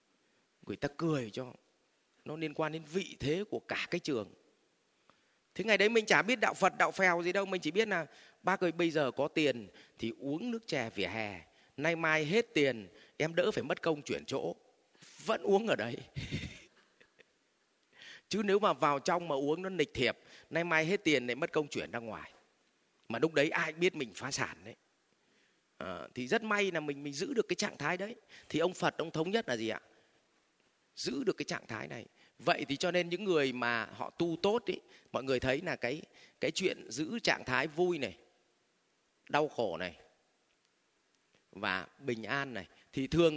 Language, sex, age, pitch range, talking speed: Vietnamese, male, 30-49, 140-185 Hz, 200 wpm